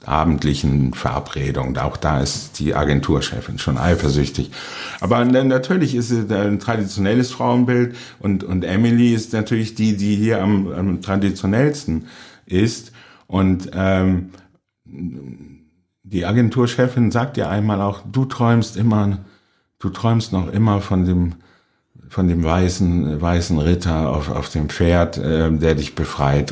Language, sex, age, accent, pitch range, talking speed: German, male, 50-69, German, 85-105 Hz, 130 wpm